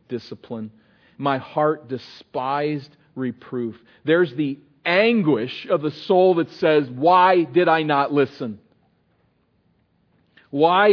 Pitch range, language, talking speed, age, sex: 125-180 Hz, English, 105 wpm, 40-59, male